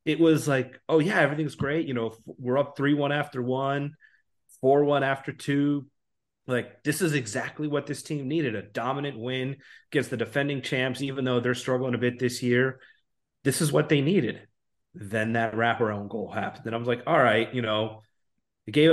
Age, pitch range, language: 30-49, 115-140 Hz, English